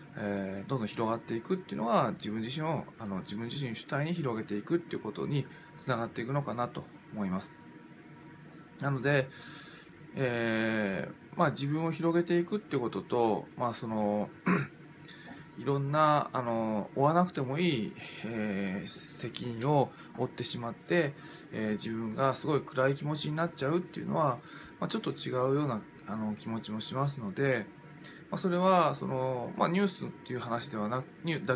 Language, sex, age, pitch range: Japanese, male, 20-39, 115-160 Hz